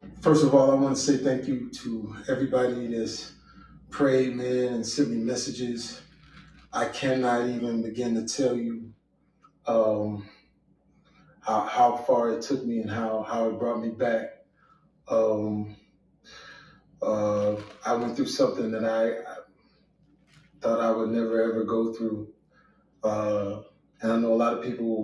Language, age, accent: English, 20-39, American